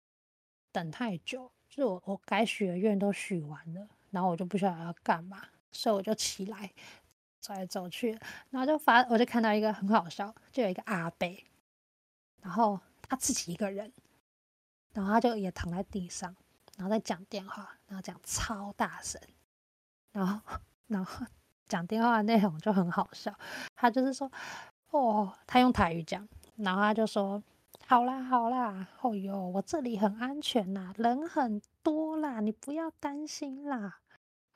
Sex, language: female, Chinese